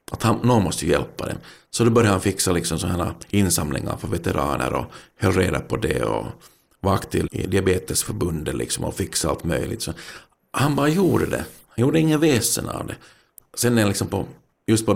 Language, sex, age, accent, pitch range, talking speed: Swedish, male, 50-69, native, 90-115 Hz, 195 wpm